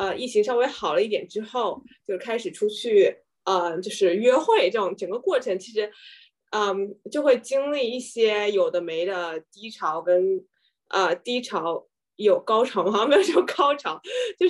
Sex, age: female, 20-39